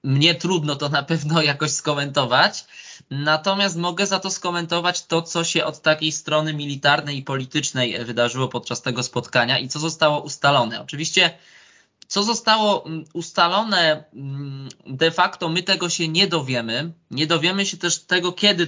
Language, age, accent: Polish, 20-39, native